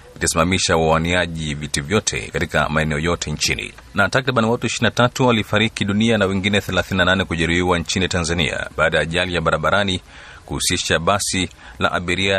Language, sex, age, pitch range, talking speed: Swahili, male, 30-49, 80-95 Hz, 145 wpm